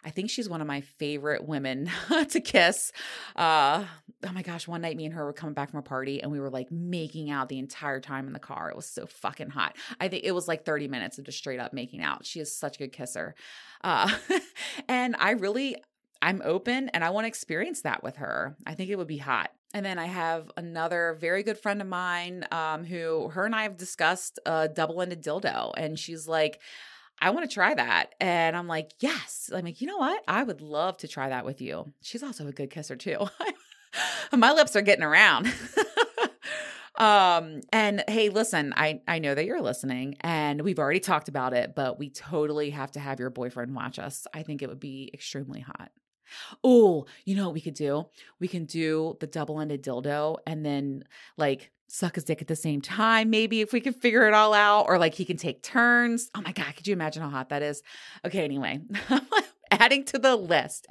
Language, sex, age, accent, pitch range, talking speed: English, female, 20-39, American, 150-205 Hz, 220 wpm